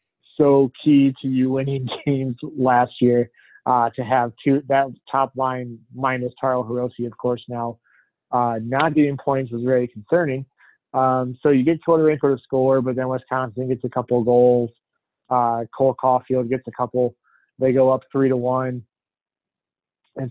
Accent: American